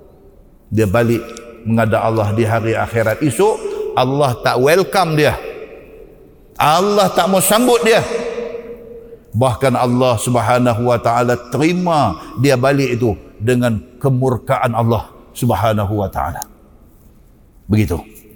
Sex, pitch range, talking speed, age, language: male, 110-140 Hz, 110 wpm, 50-69, Malay